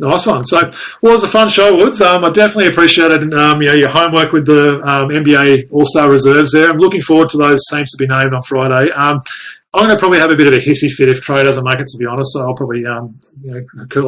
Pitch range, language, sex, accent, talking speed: 140-175 Hz, English, male, Australian, 250 wpm